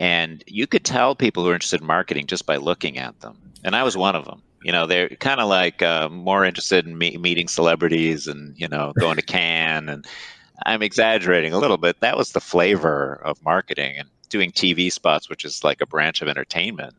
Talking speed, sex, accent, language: 215 wpm, male, American, English